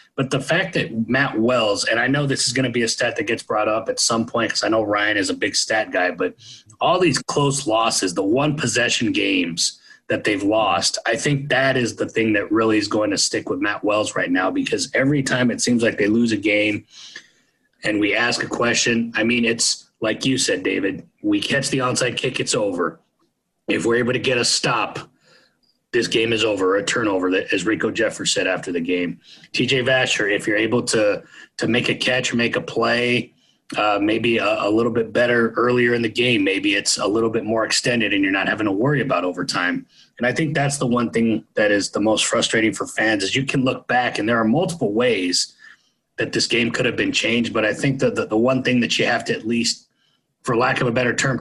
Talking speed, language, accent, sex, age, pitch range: 235 wpm, English, American, male, 30-49, 110-130 Hz